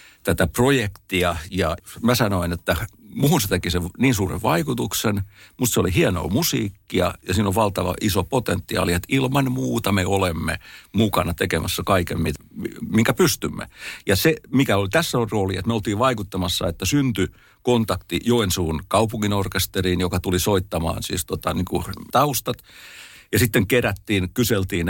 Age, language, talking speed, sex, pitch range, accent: 50-69, Finnish, 140 wpm, male, 90-115 Hz, native